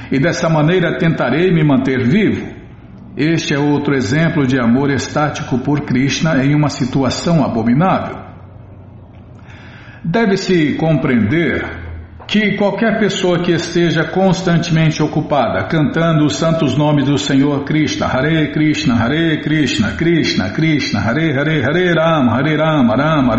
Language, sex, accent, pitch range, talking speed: Portuguese, male, Brazilian, 135-170 Hz, 130 wpm